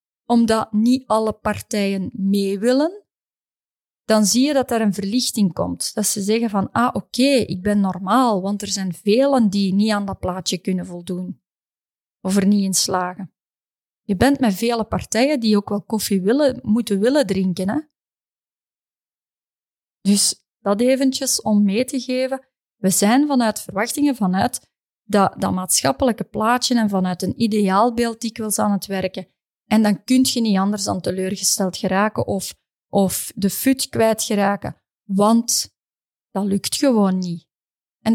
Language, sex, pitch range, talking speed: Dutch, female, 195-235 Hz, 160 wpm